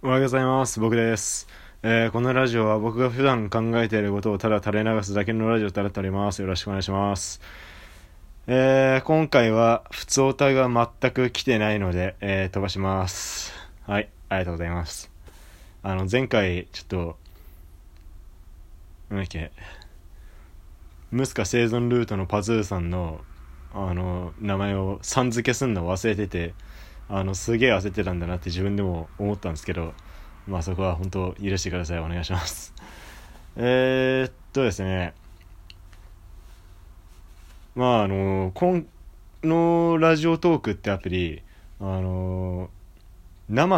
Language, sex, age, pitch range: Japanese, male, 20-39, 85-115 Hz